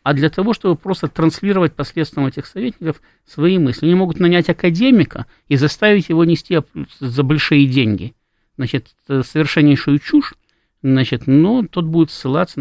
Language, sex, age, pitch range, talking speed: Russian, male, 50-69, 135-170 Hz, 145 wpm